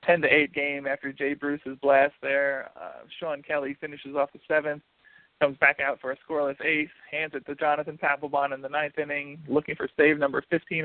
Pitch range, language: 140-150 Hz, English